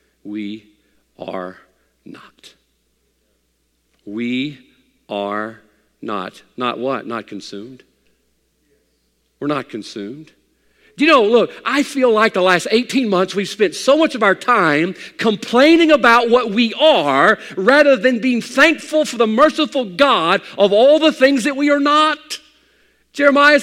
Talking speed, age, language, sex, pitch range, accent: 135 wpm, 50-69, English, male, 190-285 Hz, American